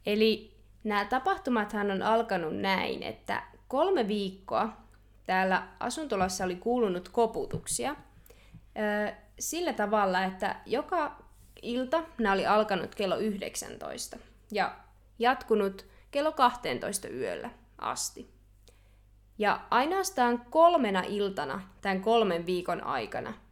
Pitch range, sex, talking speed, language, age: 185-230 Hz, female, 95 wpm, Finnish, 20-39